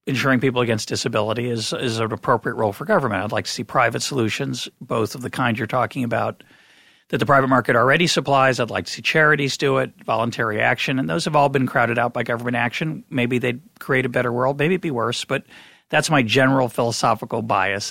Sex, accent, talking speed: male, American, 220 wpm